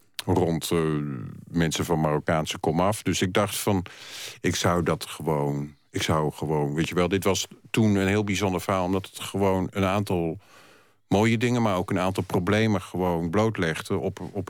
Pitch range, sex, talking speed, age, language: 80-100 Hz, male, 180 wpm, 50-69, Dutch